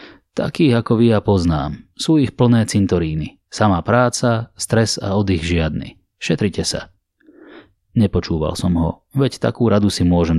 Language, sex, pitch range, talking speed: Slovak, male, 85-110 Hz, 145 wpm